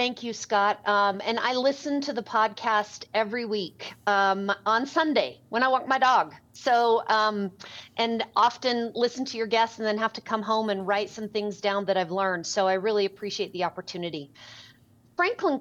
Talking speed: 190 wpm